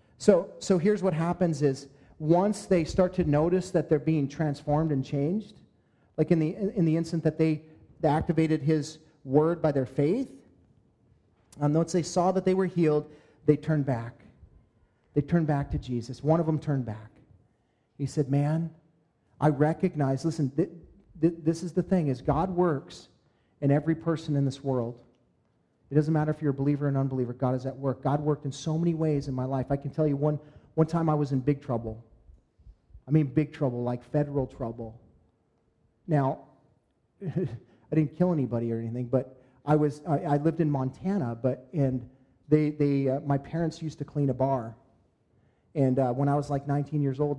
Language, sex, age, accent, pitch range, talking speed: English, male, 40-59, American, 130-160 Hz, 190 wpm